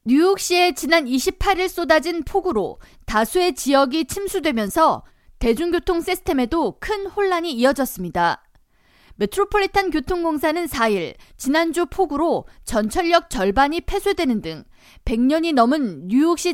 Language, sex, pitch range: Korean, female, 245-350 Hz